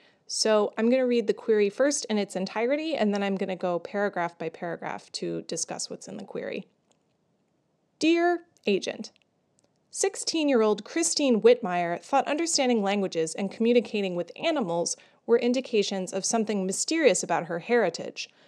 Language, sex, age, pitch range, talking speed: English, female, 30-49, 185-250 Hz, 150 wpm